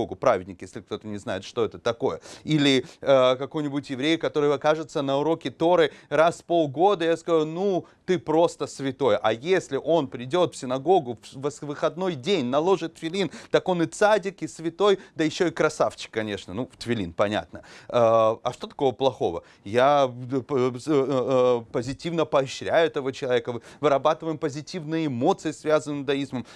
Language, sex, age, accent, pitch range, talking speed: Russian, male, 30-49, native, 135-170 Hz, 155 wpm